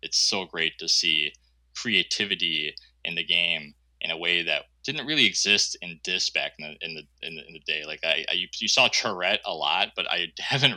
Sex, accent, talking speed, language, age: male, American, 225 wpm, English, 20-39